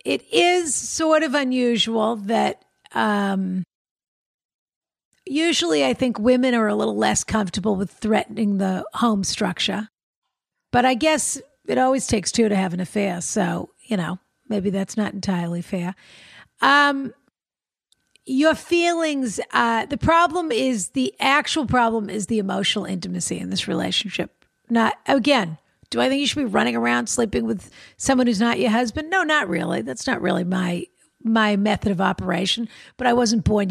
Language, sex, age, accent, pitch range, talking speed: English, female, 50-69, American, 195-260 Hz, 160 wpm